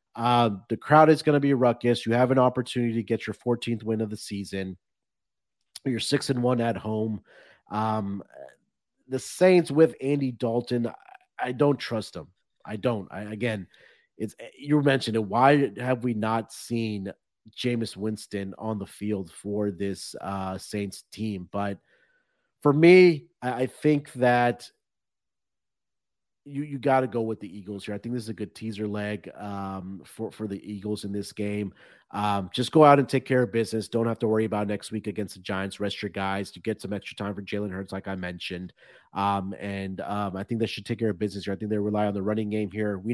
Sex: male